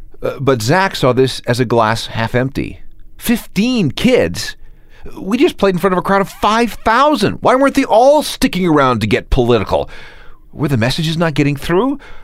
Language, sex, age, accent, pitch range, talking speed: English, male, 40-59, American, 95-145 Hz, 180 wpm